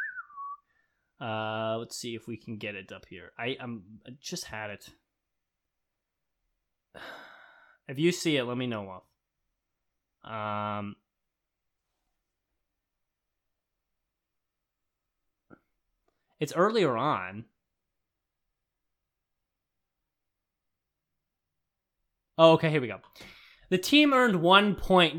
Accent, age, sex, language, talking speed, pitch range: American, 20-39, male, English, 90 wpm, 115-170 Hz